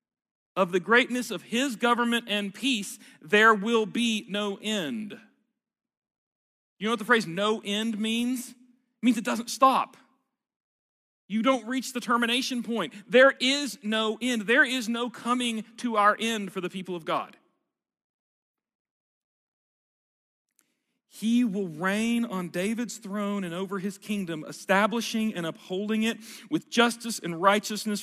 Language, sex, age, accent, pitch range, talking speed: English, male, 40-59, American, 190-245 Hz, 140 wpm